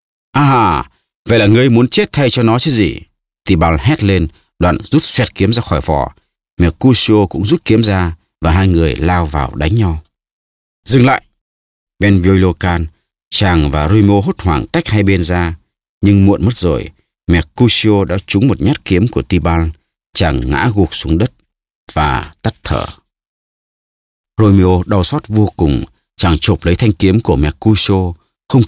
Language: Vietnamese